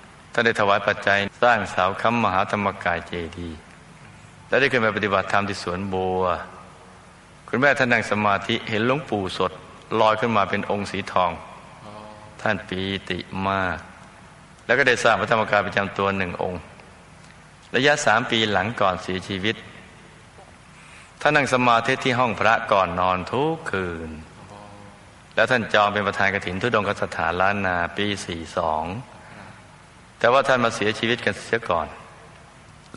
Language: Thai